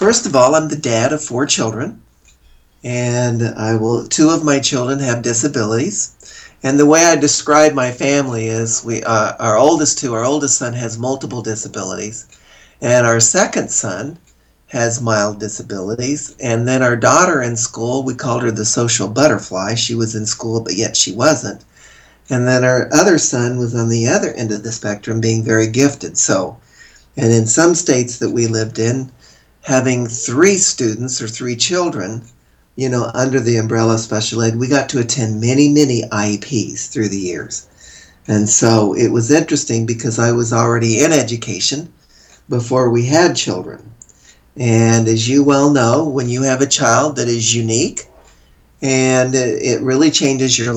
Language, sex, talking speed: English, male, 170 wpm